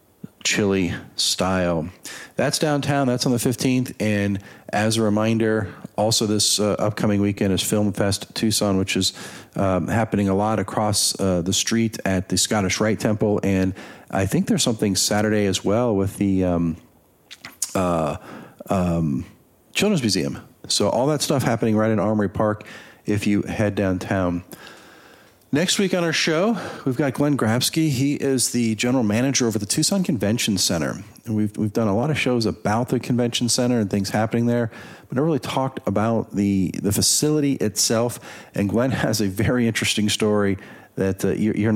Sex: male